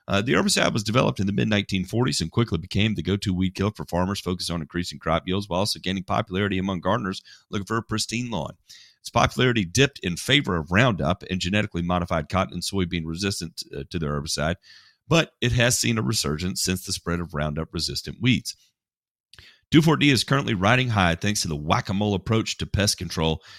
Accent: American